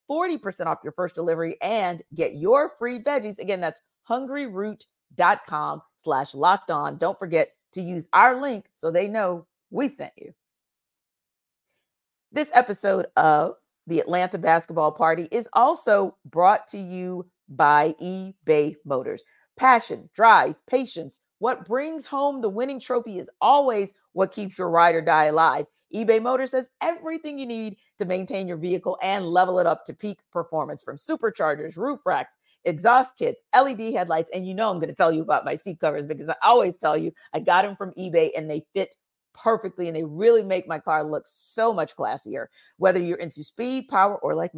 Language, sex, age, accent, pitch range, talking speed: English, female, 40-59, American, 165-240 Hz, 170 wpm